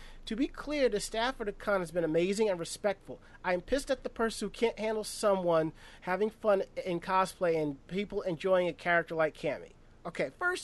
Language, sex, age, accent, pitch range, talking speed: English, male, 30-49, American, 160-205 Hz, 195 wpm